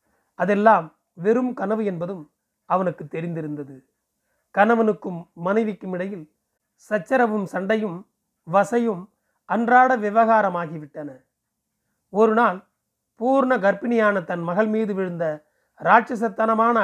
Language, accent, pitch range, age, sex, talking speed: Tamil, native, 175-225 Hz, 30-49, male, 80 wpm